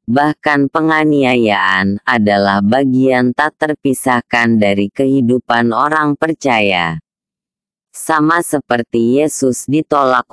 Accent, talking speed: American, 80 wpm